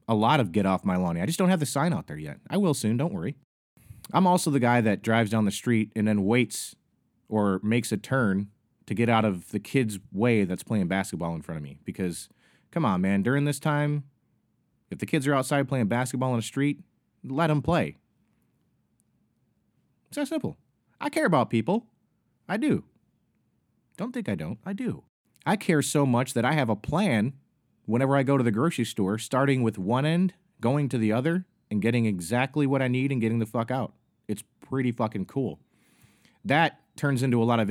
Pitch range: 110-140 Hz